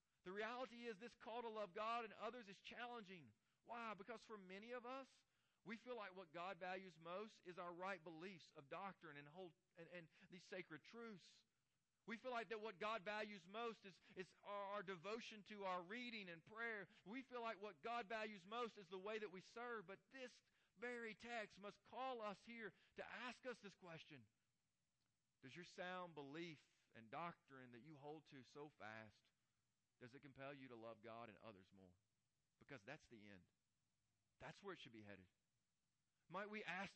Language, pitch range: English, 145-215 Hz